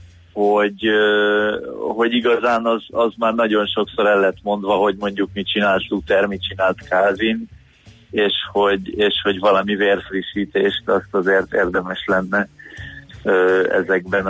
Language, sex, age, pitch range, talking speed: Hungarian, male, 30-49, 95-110 Hz, 120 wpm